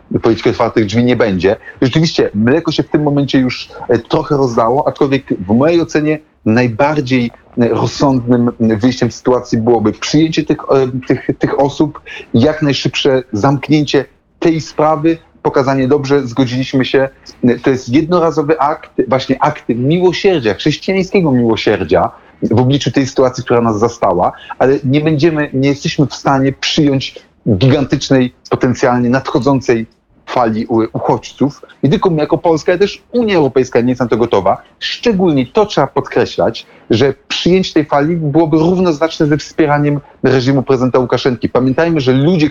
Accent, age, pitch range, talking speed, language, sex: native, 30-49, 125-155 Hz, 135 wpm, Polish, male